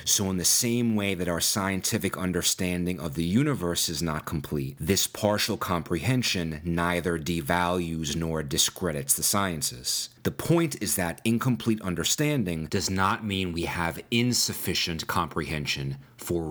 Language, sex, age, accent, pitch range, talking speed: English, male, 30-49, American, 85-110 Hz, 140 wpm